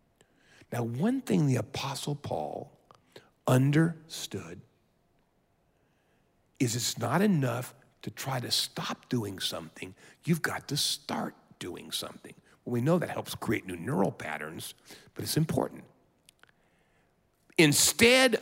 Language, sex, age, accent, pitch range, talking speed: English, male, 50-69, American, 115-160 Hz, 115 wpm